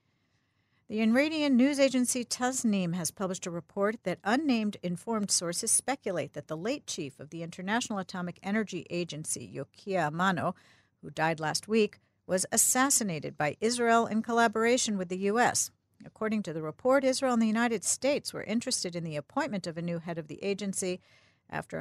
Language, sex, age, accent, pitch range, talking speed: English, female, 50-69, American, 165-220 Hz, 170 wpm